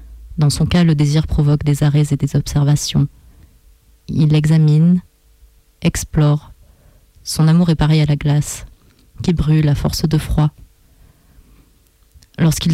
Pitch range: 150-170 Hz